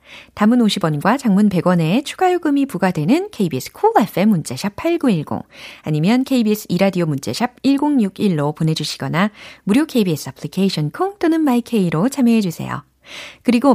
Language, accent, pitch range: Korean, native, 160-270 Hz